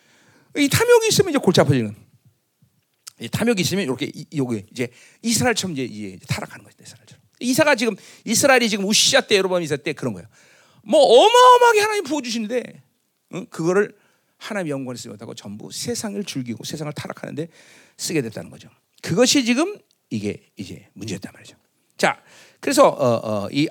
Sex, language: male, Korean